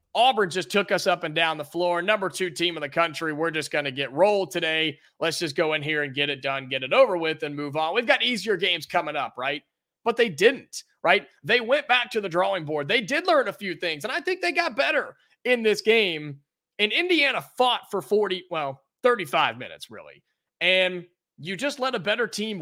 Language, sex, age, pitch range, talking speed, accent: English, male, 30-49, 170-235 Hz, 230 wpm, American